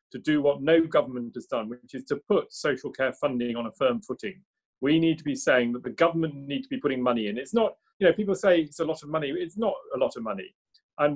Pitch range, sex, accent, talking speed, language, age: 130-175 Hz, male, British, 270 wpm, English, 40-59